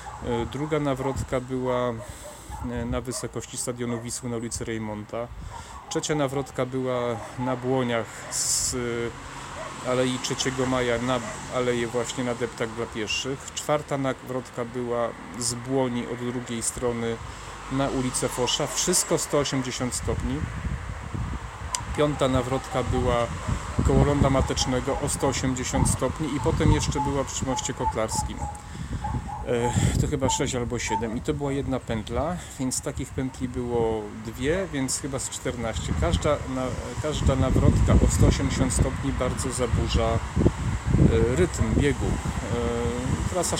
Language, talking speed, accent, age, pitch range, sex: Polish, 120 wpm, native, 30-49, 115-130 Hz, male